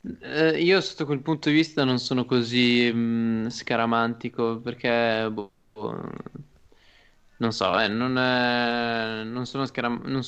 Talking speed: 105 wpm